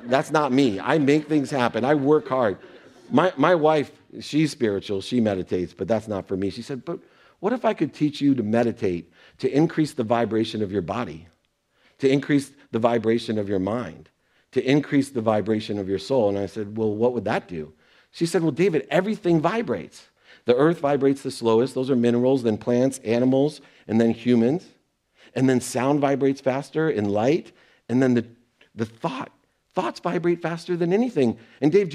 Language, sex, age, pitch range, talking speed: English, male, 50-69, 115-155 Hz, 190 wpm